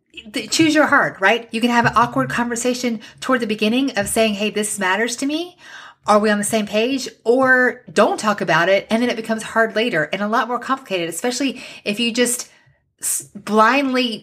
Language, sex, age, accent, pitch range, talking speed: English, female, 30-49, American, 170-245 Hz, 200 wpm